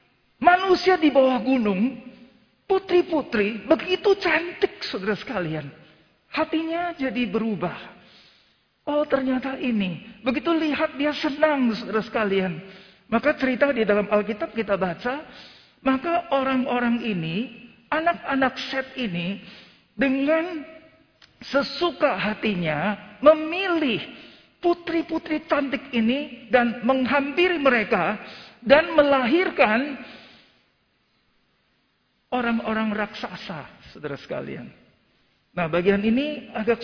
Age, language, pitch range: 50-69, Indonesian, 210-295 Hz